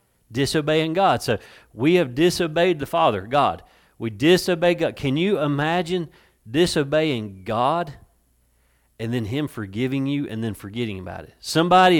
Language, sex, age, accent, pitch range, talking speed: English, male, 40-59, American, 100-145 Hz, 140 wpm